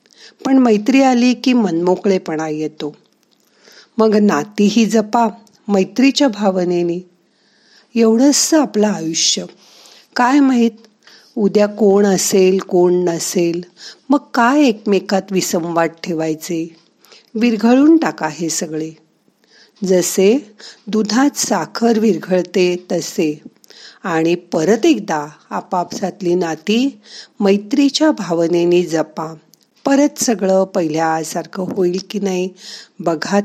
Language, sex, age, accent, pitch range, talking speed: Marathi, female, 50-69, native, 175-235 Hz, 90 wpm